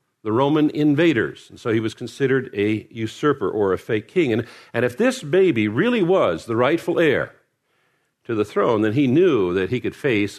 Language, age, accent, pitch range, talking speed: English, 50-69, American, 110-140 Hz, 195 wpm